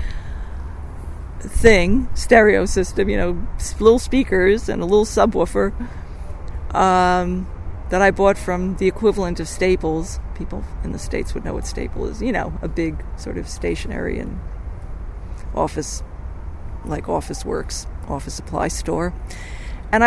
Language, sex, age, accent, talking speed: English, female, 50-69, American, 135 wpm